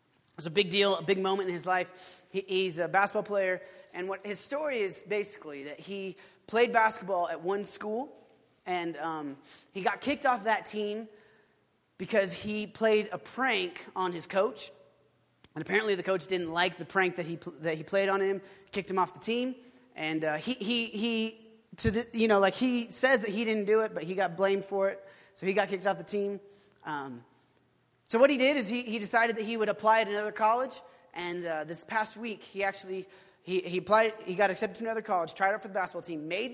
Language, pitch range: English, 180-225 Hz